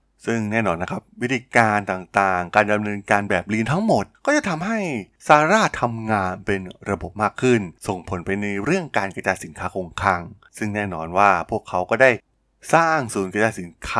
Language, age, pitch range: Thai, 20-39, 90-115 Hz